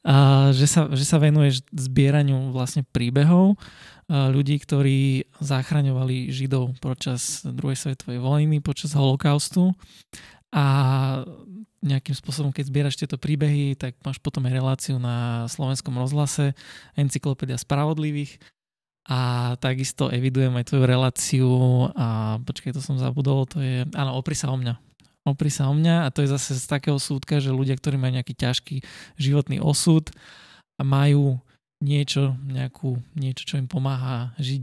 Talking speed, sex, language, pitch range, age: 145 wpm, male, Slovak, 130-145 Hz, 20-39